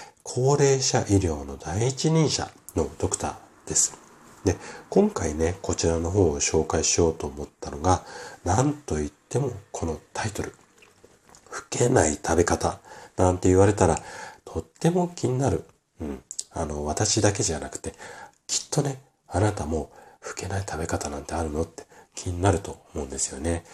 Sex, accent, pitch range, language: male, native, 80-125 Hz, Japanese